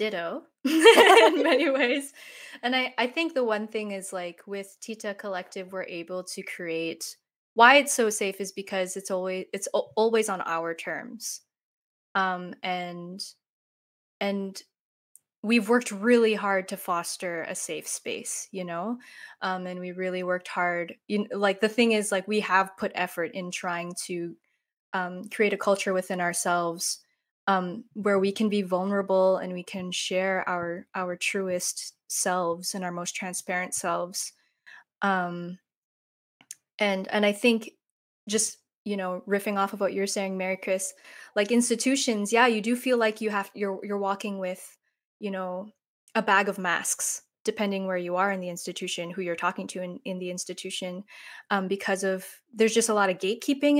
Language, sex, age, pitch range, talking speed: English, female, 20-39, 180-220 Hz, 170 wpm